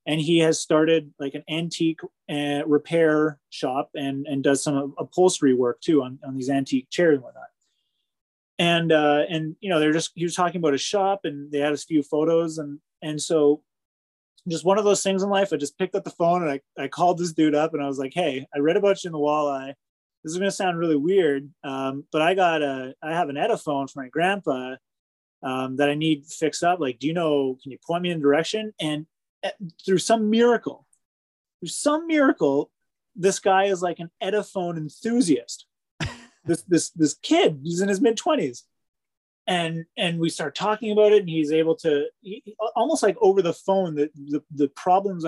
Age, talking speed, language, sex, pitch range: 20-39, 205 wpm, English, male, 145-185 Hz